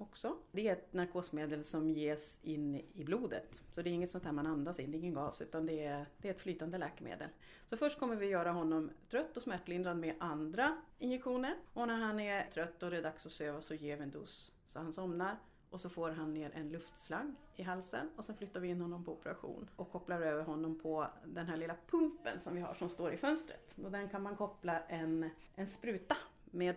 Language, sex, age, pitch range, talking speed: Swedish, female, 30-49, 160-205 Hz, 235 wpm